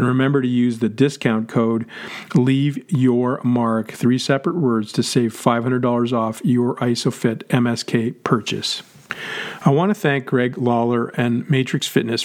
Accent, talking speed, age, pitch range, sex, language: American, 145 wpm, 40-59, 115-135 Hz, male, English